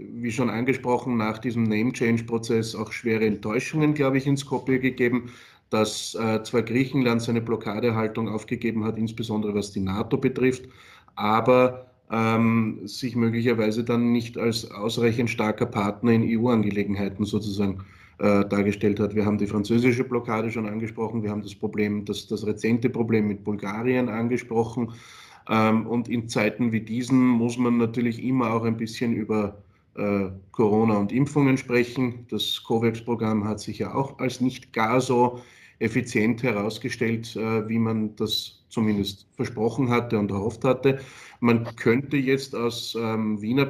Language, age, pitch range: German, 20-39, 110-125 Hz